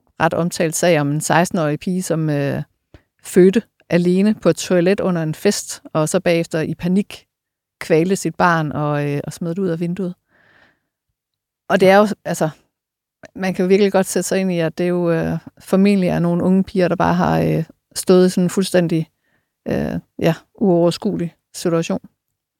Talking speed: 180 wpm